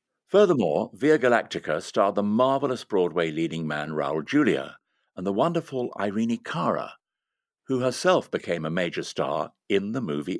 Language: English